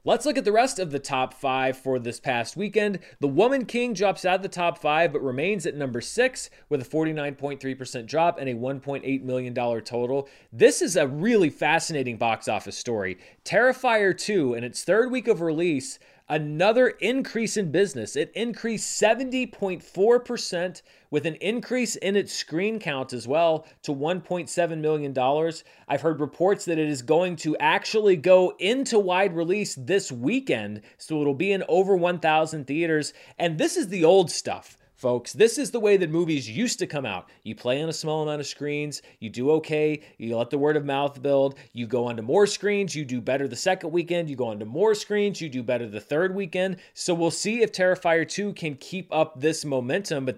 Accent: American